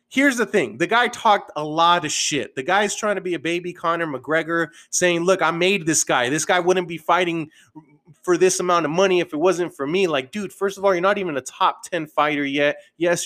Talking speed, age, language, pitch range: 245 wpm, 30-49, English, 155-195 Hz